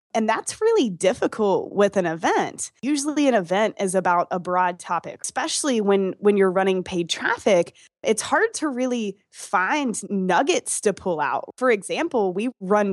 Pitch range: 185-230 Hz